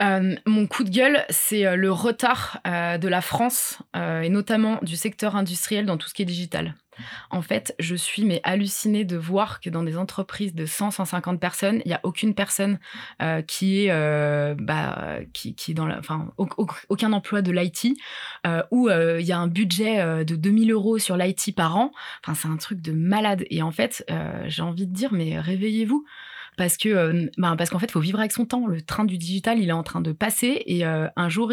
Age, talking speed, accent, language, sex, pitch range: 20-39, 225 wpm, French, French, female, 175-220 Hz